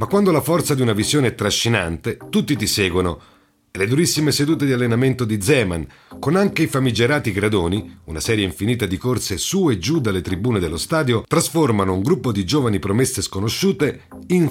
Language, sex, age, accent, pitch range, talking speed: Italian, male, 40-59, native, 100-145 Hz, 185 wpm